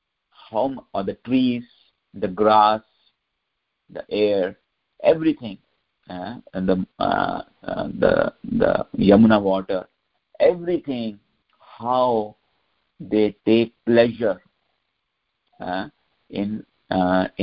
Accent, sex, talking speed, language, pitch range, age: Indian, male, 90 wpm, English, 95-110 Hz, 50-69